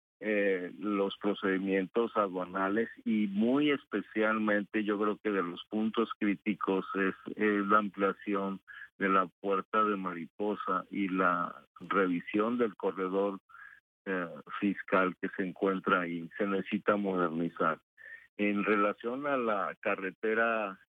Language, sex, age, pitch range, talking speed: Spanish, male, 50-69, 95-105 Hz, 120 wpm